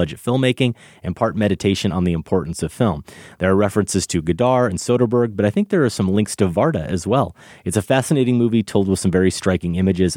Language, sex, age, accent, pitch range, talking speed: English, male, 30-49, American, 90-115 Hz, 225 wpm